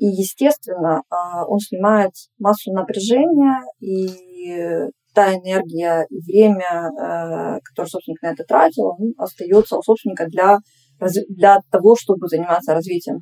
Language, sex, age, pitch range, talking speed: Ukrainian, female, 20-39, 175-220 Hz, 120 wpm